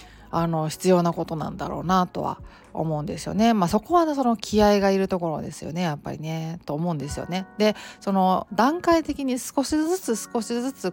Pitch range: 165-210 Hz